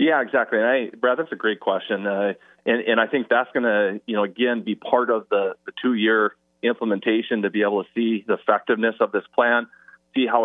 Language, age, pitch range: English, 30-49, 100-115 Hz